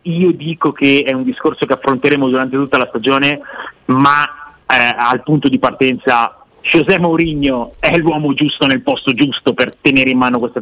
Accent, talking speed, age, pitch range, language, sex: native, 175 wpm, 30-49, 125-155 Hz, Italian, male